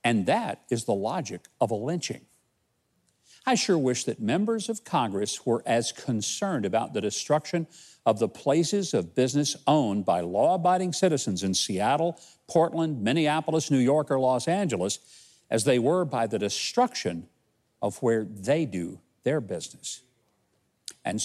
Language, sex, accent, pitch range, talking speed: English, male, American, 120-175 Hz, 145 wpm